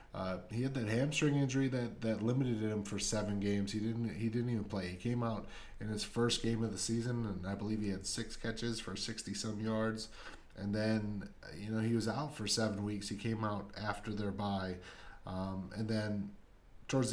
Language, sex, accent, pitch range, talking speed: English, male, American, 100-115 Hz, 205 wpm